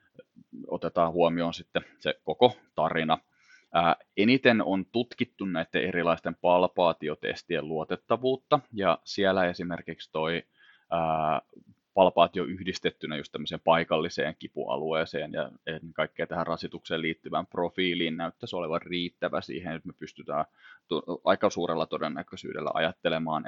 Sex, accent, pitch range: male, native, 85-100 Hz